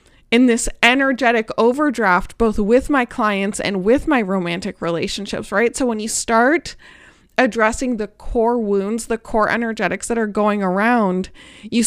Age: 20-39